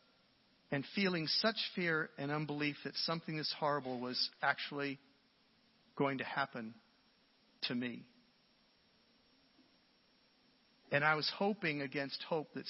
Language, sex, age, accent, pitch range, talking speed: English, male, 50-69, American, 135-215 Hz, 115 wpm